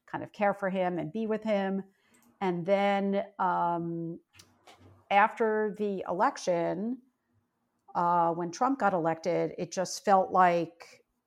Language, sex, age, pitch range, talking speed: English, female, 50-69, 170-200 Hz, 130 wpm